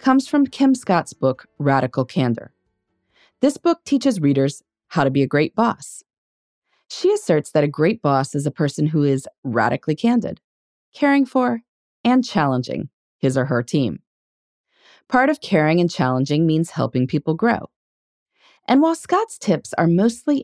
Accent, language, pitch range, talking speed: American, English, 130-210 Hz, 155 wpm